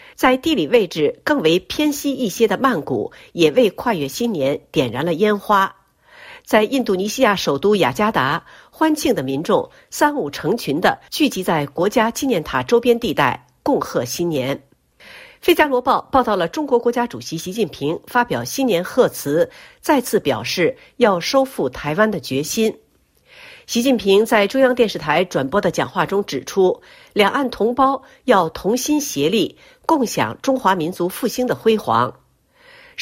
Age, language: 50-69, Chinese